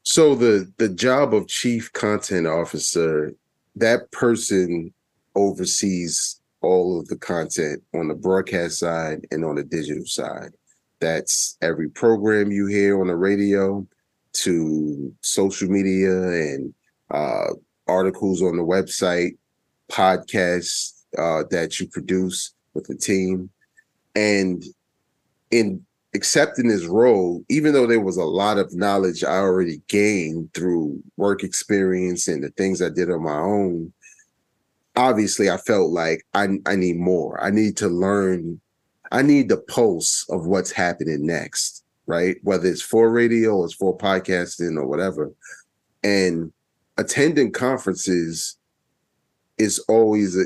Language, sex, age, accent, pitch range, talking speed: English, male, 30-49, American, 90-105 Hz, 130 wpm